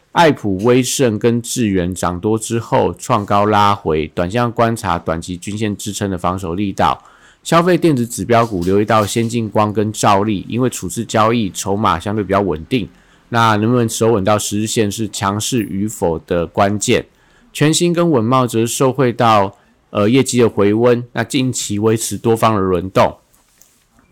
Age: 50-69